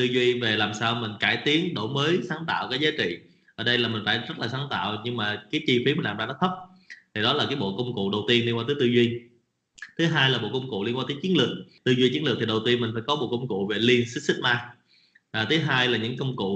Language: Vietnamese